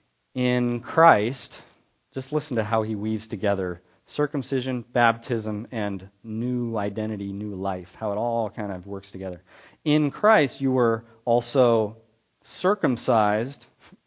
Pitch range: 100-125 Hz